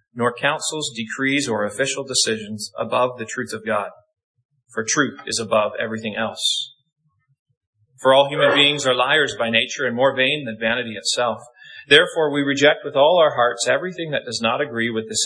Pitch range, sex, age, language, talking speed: 115-145 Hz, male, 30-49, English, 175 wpm